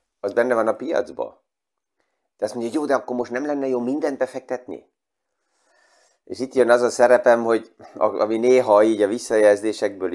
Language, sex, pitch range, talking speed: Hungarian, male, 90-115 Hz, 175 wpm